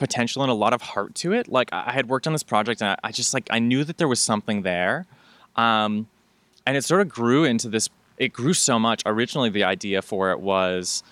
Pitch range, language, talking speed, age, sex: 100-125 Hz, English, 235 wpm, 20-39, male